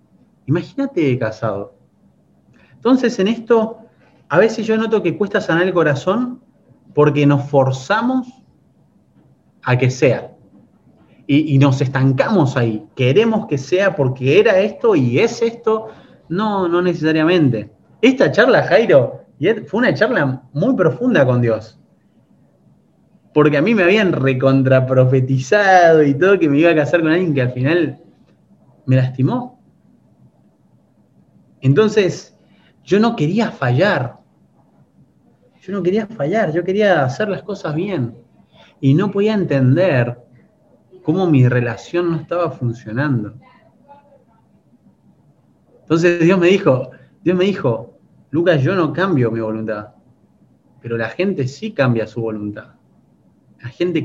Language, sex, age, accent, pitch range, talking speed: Spanish, male, 30-49, Argentinian, 130-195 Hz, 125 wpm